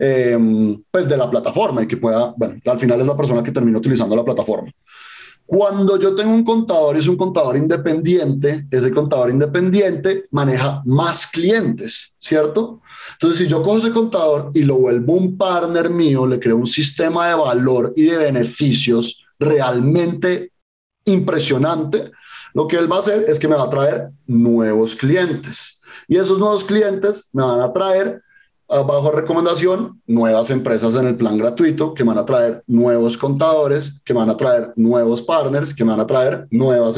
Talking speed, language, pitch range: 170 wpm, Spanish, 120-175 Hz